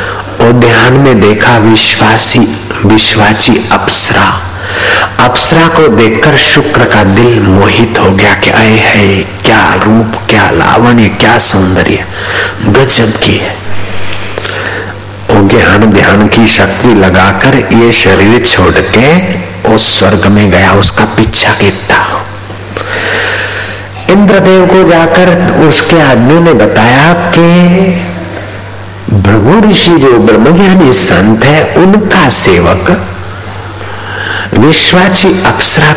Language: Hindi